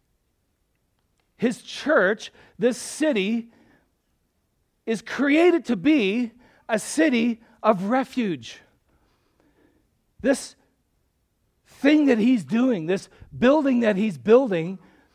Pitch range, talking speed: 215-280 Hz, 85 wpm